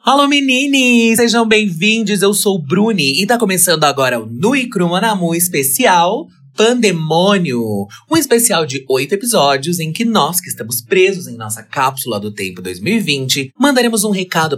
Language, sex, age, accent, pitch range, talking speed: Portuguese, male, 30-49, Brazilian, 125-205 Hz, 150 wpm